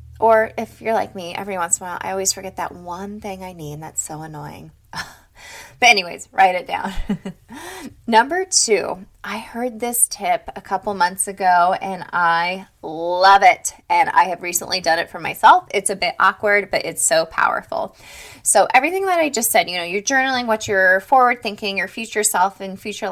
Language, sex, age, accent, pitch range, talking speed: English, female, 20-39, American, 185-230 Hz, 195 wpm